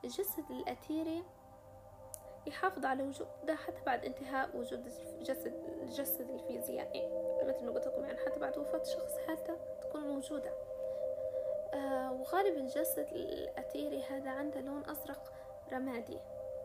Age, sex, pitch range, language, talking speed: 10-29, female, 260-310 Hz, Arabic, 115 wpm